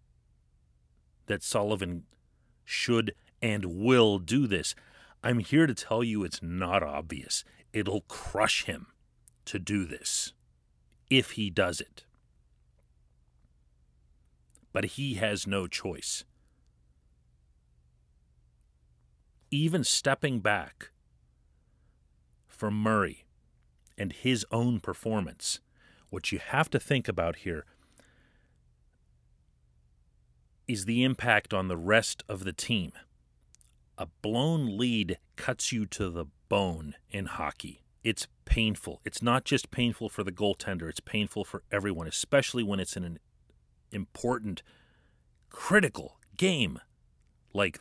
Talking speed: 110 wpm